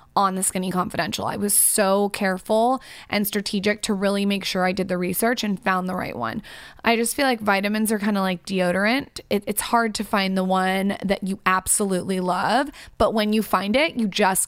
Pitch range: 190-220 Hz